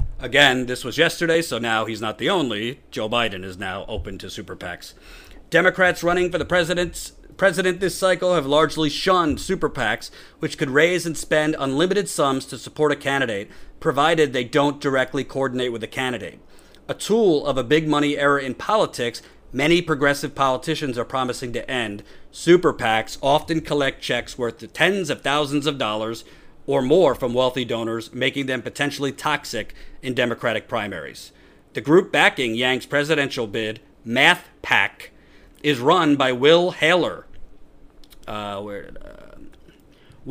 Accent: American